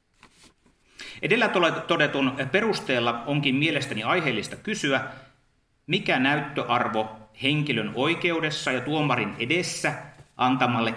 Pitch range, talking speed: 120-160 Hz, 80 wpm